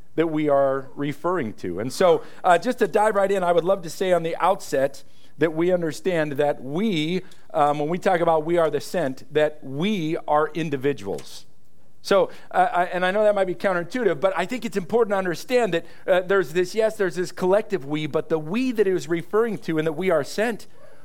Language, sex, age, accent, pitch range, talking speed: English, male, 40-59, American, 150-195 Hz, 220 wpm